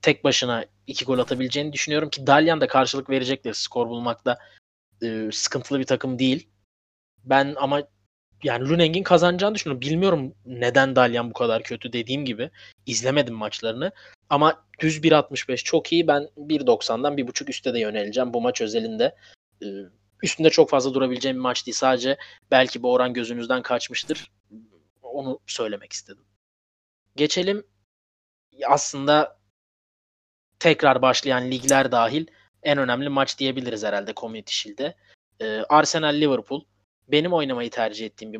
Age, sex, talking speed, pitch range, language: 20-39, male, 135 wpm, 110-150 Hz, Turkish